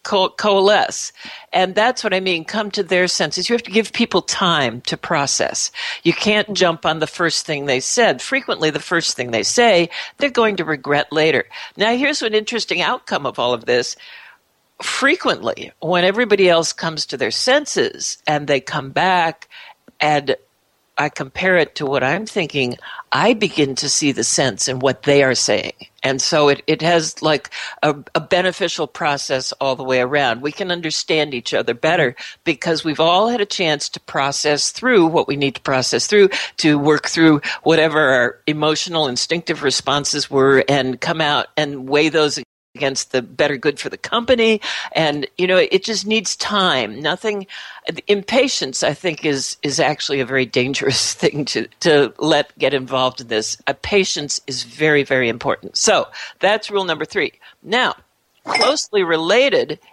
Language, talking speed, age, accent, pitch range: English, 175 wpm, 60-79, American, 140-195 Hz